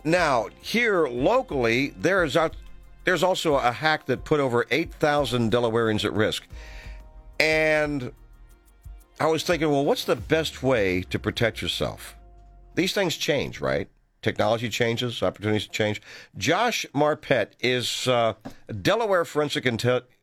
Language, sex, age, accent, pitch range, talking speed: English, male, 50-69, American, 105-150 Hz, 130 wpm